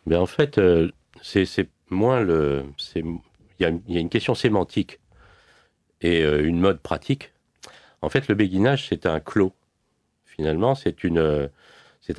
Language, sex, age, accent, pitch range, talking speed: French, male, 40-59, French, 70-95 Hz, 155 wpm